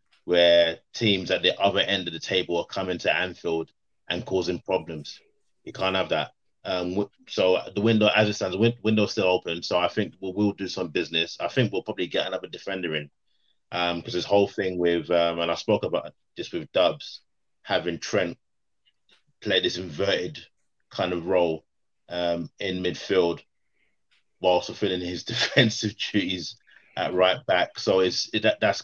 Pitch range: 85-105 Hz